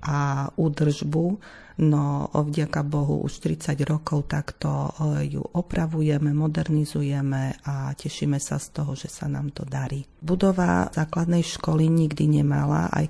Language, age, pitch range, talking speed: Slovak, 40-59, 145-160 Hz, 130 wpm